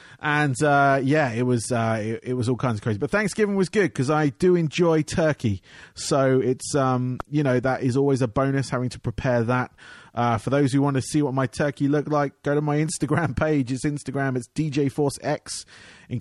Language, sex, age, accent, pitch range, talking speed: English, male, 30-49, British, 125-150 Hz, 220 wpm